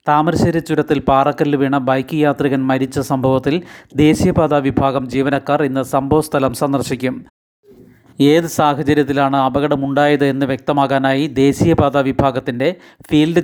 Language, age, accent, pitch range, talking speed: Malayalam, 30-49, native, 135-150 Hz, 100 wpm